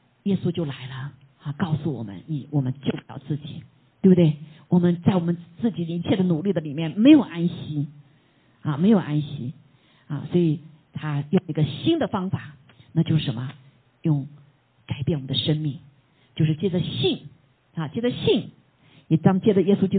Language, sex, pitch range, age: Chinese, female, 145-190 Hz, 50-69